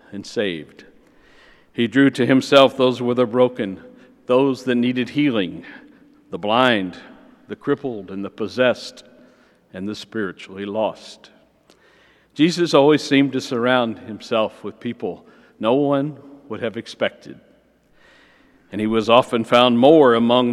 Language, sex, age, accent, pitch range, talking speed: English, male, 60-79, American, 115-140 Hz, 135 wpm